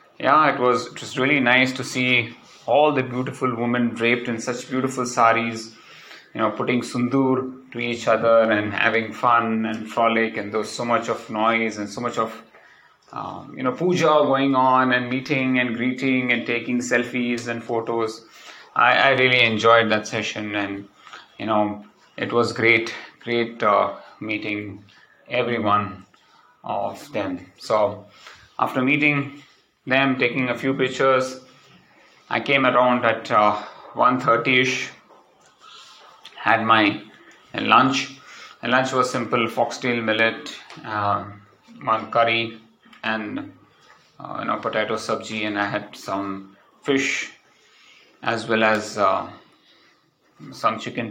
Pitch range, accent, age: 115-130 Hz, Indian, 30-49